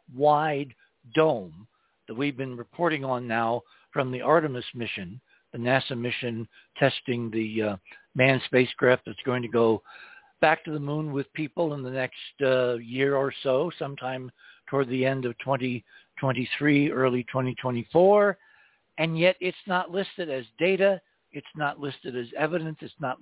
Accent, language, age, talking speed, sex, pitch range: American, English, 60-79, 150 wpm, male, 125-160 Hz